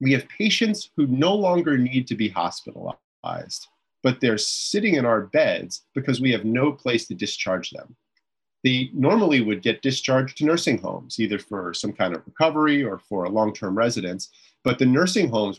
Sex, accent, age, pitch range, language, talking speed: male, American, 30-49, 110-150 Hz, English, 180 wpm